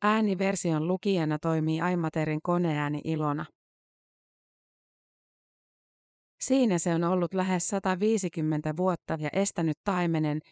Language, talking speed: Finnish, 90 wpm